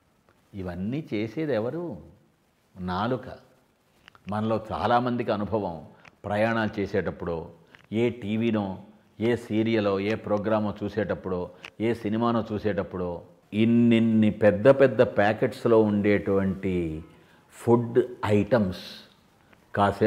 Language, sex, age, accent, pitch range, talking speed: English, male, 50-69, Indian, 100-130 Hz, 80 wpm